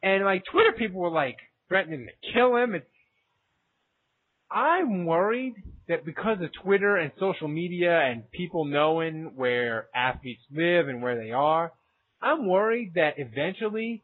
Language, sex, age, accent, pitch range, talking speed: English, male, 30-49, American, 155-195 Hz, 145 wpm